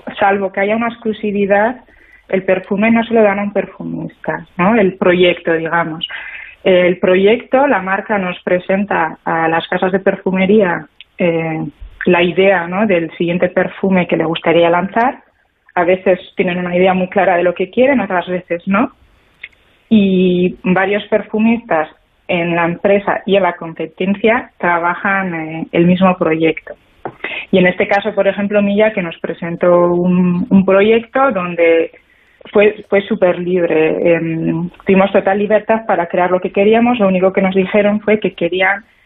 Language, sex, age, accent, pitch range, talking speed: Spanish, female, 20-39, Spanish, 175-205 Hz, 160 wpm